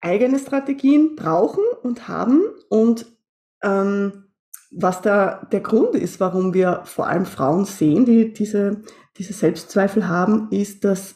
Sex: female